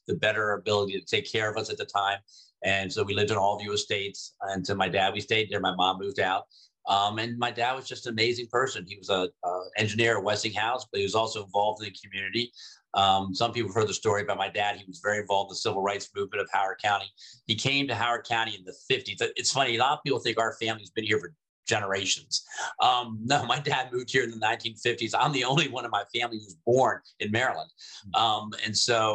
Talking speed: 245 wpm